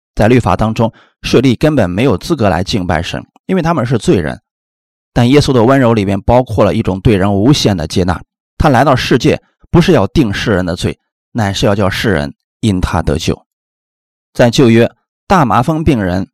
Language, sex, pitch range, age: Chinese, male, 90-120 Hz, 20-39